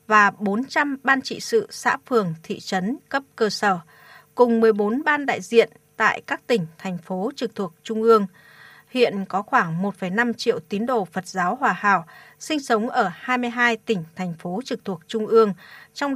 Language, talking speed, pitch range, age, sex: Vietnamese, 180 wpm, 195-245 Hz, 20-39, female